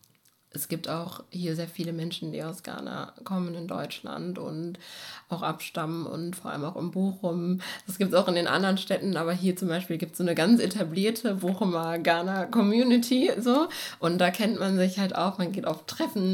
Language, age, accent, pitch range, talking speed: German, 20-39, German, 170-195 Hz, 200 wpm